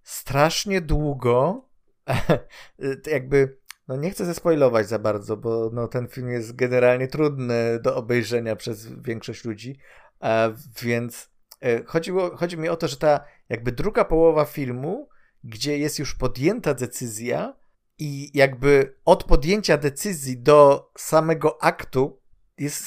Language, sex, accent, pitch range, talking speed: Polish, male, native, 130-185 Hz, 130 wpm